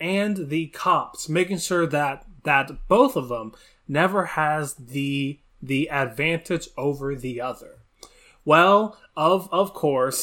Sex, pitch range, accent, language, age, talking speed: male, 145-190 Hz, American, English, 20-39, 130 wpm